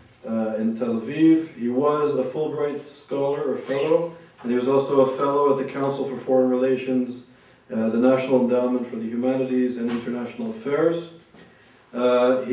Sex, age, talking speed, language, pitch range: male, 40-59, 165 wpm, English, 125-140 Hz